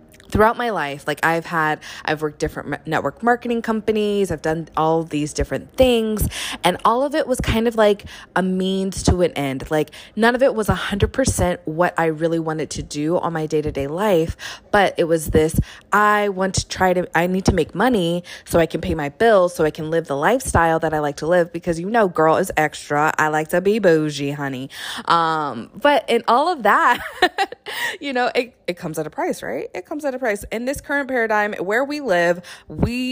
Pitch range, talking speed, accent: 160-220 Hz, 220 wpm, American